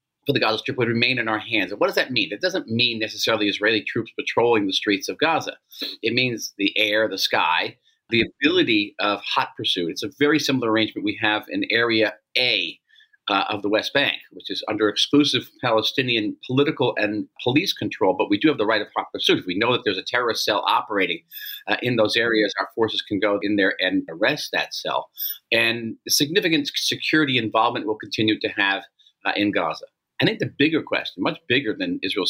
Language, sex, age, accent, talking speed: English, male, 40-59, American, 205 wpm